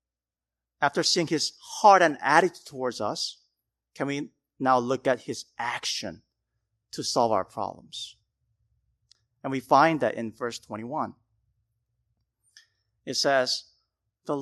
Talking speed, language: 120 wpm, English